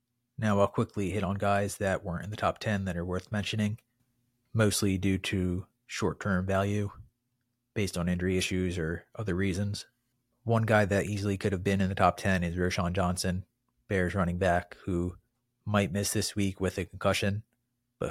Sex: male